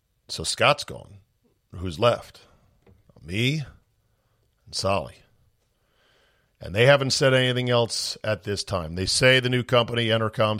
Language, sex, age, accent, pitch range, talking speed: English, male, 50-69, American, 100-130 Hz, 130 wpm